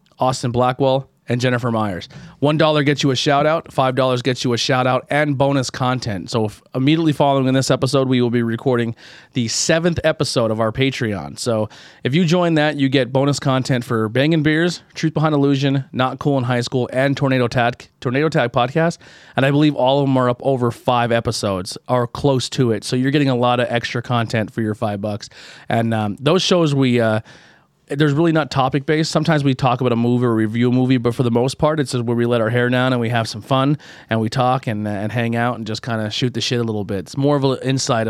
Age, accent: 30-49, American